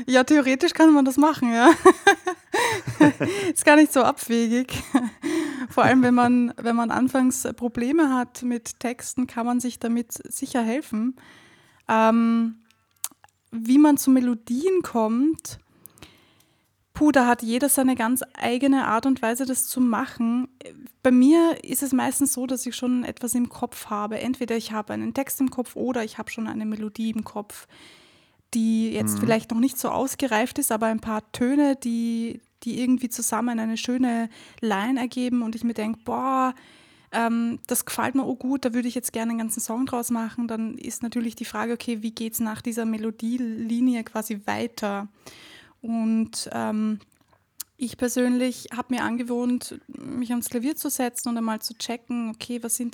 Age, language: 20-39, German